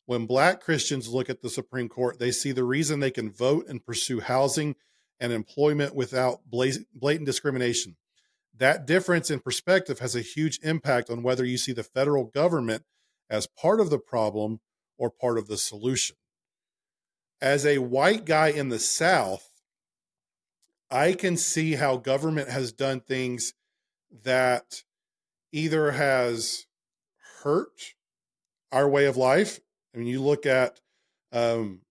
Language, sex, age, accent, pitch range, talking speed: English, male, 40-59, American, 115-140 Hz, 145 wpm